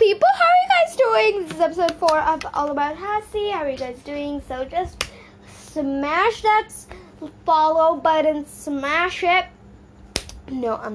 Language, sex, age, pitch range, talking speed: English, female, 10-29, 235-325 Hz, 160 wpm